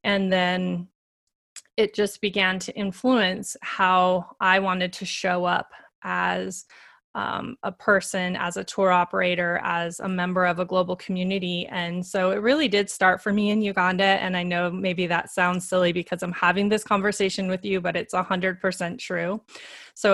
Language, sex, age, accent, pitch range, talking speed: English, female, 20-39, American, 180-205 Hz, 175 wpm